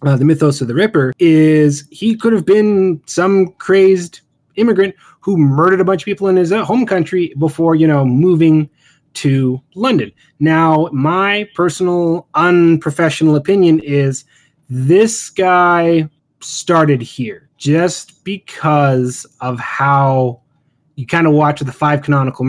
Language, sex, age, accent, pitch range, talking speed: English, male, 20-39, American, 135-175 Hz, 135 wpm